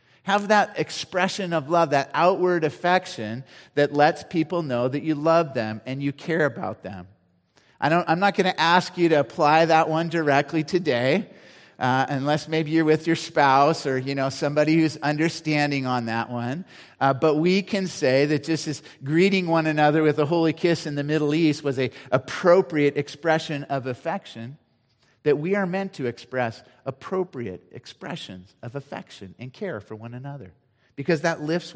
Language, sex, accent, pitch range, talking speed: English, male, American, 130-165 Hz, 180 wpm